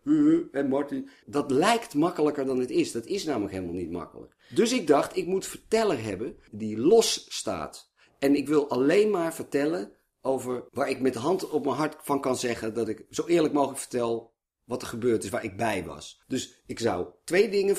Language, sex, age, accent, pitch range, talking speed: Dutch, male, 50-69, Dutch, 115-180 Hz, 205 wpm